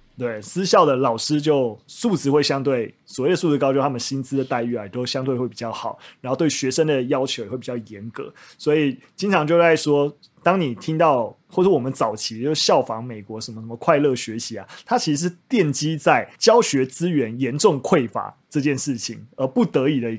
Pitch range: 120-160 Hz